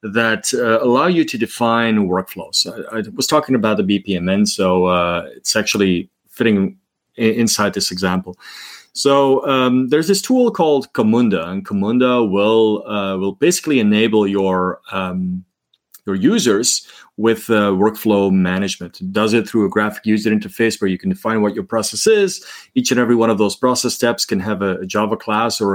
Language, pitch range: English, 100-130 Hz